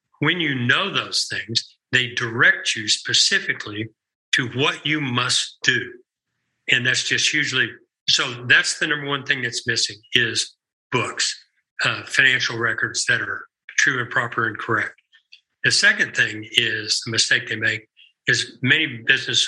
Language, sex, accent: English, male, American